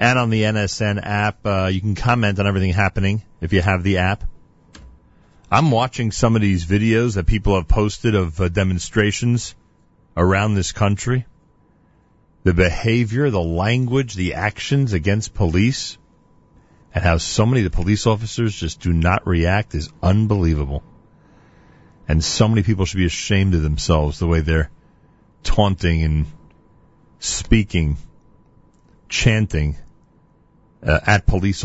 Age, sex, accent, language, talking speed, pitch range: 40-59, male, American, English, 140 wpm, 90-115 Hz